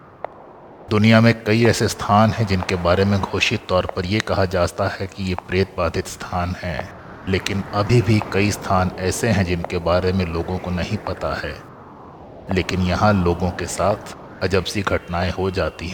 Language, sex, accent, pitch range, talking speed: Hindi, male, native, 90-100 Hz, 175 wpm